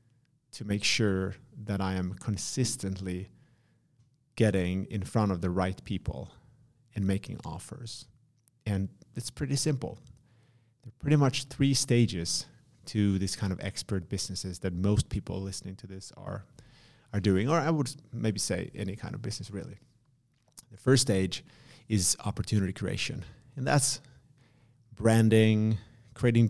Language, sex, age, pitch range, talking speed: English, male, 30-49, 95-125 Hz, 140 wpm